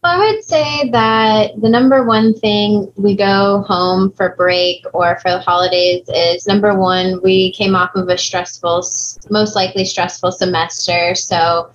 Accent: American